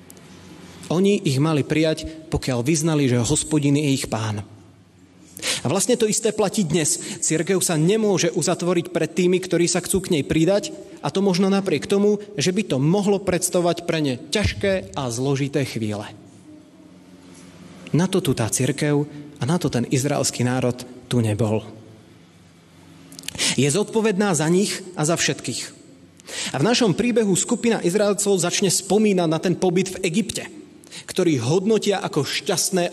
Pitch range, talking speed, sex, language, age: 135-195 Hz, 150 wpm, male, Slovak, 30-49